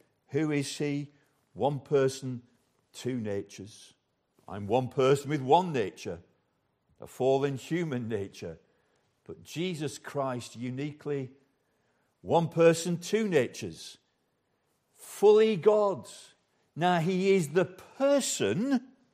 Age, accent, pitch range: 50-69, British, 135-205 Hz